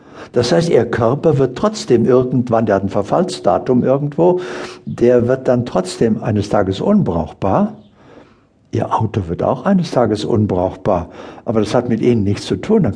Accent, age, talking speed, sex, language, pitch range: German, 60-79, 160 wpm, male, German, 110-135 Hz